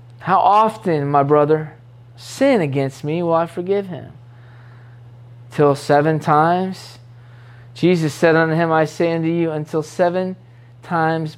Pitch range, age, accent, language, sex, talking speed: 120-205 Hz, 20-39, American, English, male, 130 wpm